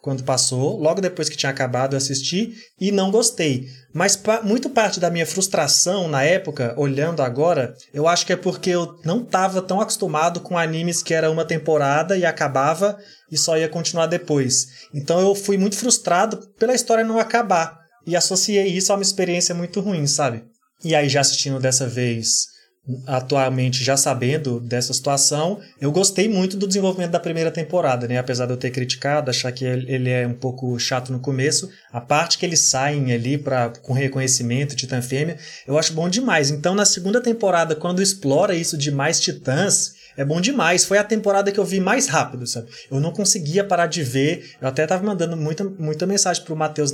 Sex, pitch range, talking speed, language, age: male, 135-190 Hz, 195 wpm, Portuguese, 20-39